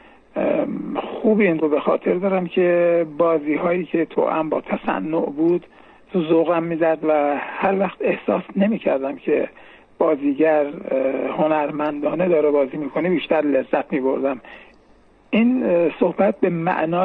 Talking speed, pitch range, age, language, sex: 130 wpm, 150-185 Hz, 60-79, Persian, male